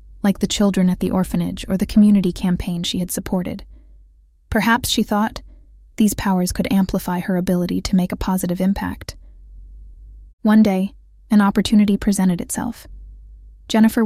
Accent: American